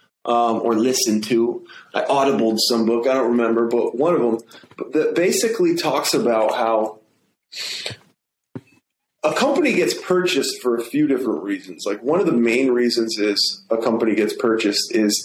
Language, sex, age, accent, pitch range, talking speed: English, male, 30-49, American, 115-150 Hz, 165 wpm